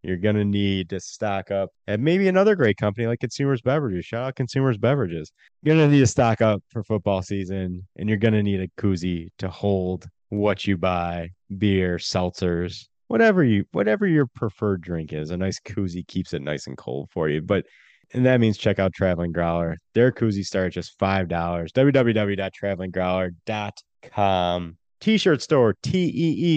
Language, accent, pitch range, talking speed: English, American, 95-130 Hz, 175 wpm